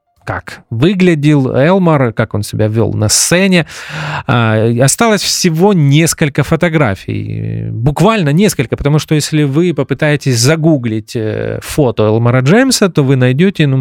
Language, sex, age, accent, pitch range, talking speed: Russian, male, 30-49, native, 120-175 Hz, 115 wpm